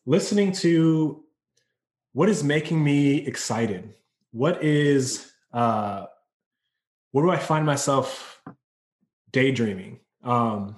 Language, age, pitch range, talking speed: English, 20-39, 115-140 Hz, 95 wpm